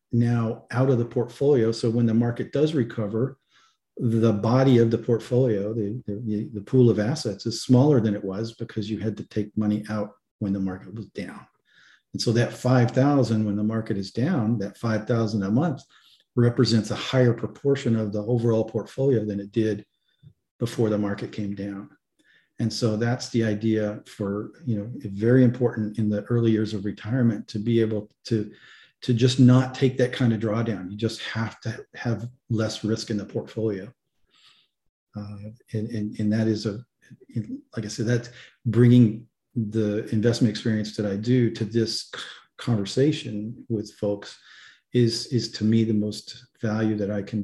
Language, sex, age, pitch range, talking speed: English, male, 40-59, 105-120 Hz, 180 wpm